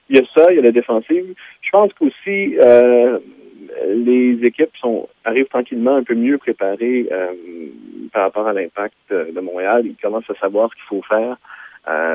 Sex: male